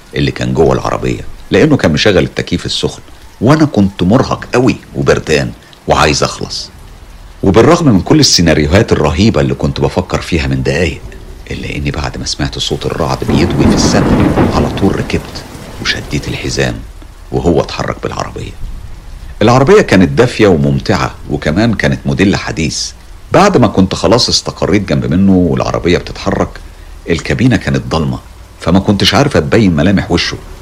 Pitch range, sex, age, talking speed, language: 70-100 Hz, male, 50-69, 140 wpm, Arabic